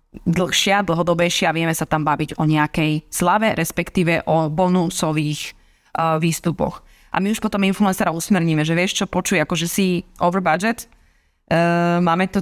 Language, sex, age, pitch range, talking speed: Slovak, female, 20-39, 160-185 Hz, 150 wpm